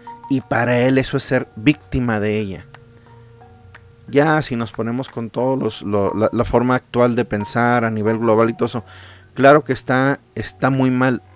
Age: 40-59